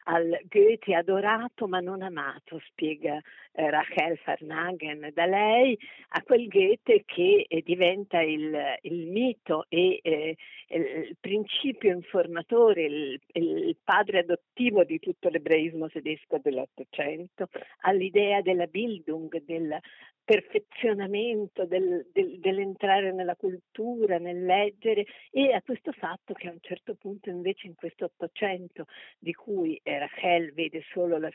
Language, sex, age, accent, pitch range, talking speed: Italian, female, 50-69, native, 160-205 Hz, 130 wpm